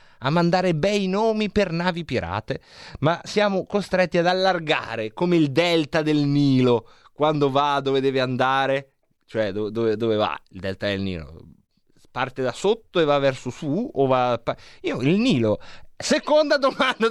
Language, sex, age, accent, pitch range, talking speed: Italian, male, 30-49, native, 110-180 Hz, 160 wpm